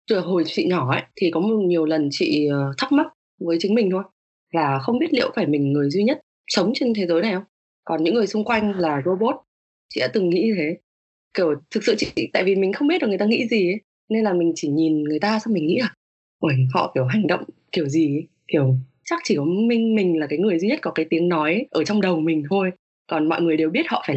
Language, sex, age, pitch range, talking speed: Vietnamese, female, 20-39, 155-215 Hz, 260 wpm